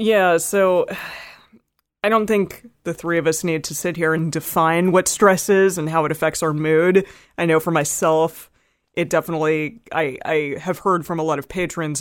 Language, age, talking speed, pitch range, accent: English, 30-49, 195 wpm, 150-175 Hz, American